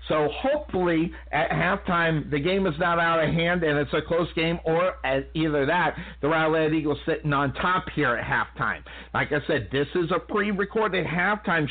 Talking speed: 185 wpm